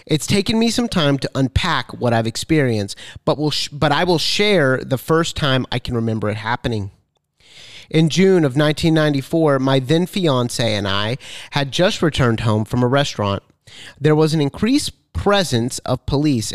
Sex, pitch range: male, 120-170 Hz